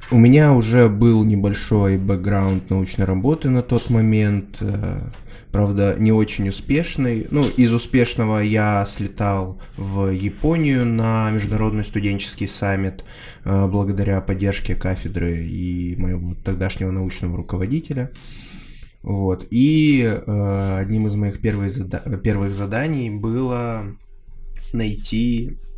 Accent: native